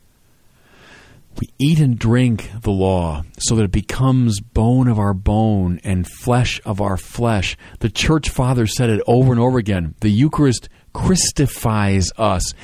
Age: 40-59